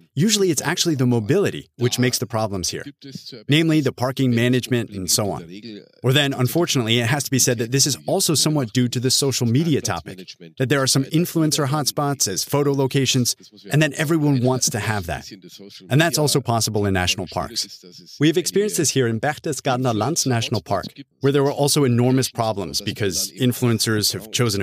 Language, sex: German, male